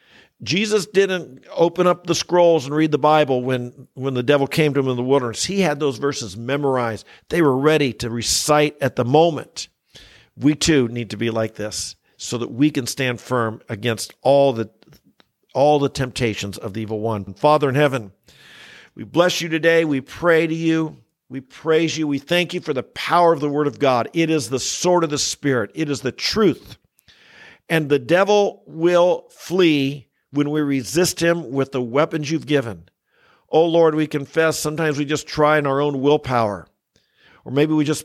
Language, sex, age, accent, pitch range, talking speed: English, male, 50-69, American, 125-160 Hz, 190 wpm